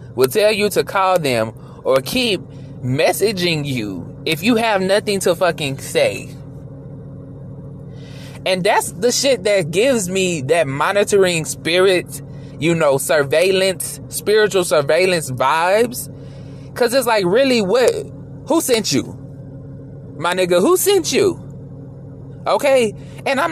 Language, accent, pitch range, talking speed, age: English, American, 140-235 Hz, 125 wpm, 20-39